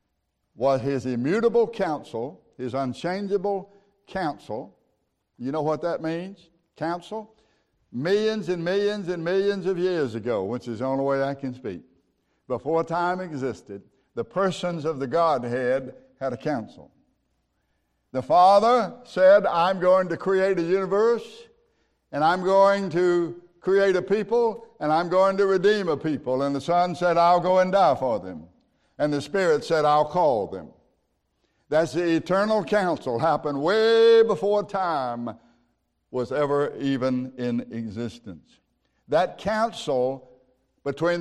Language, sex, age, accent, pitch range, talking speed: English, male, 60-79, American, 135-195 Hz, 140 wpm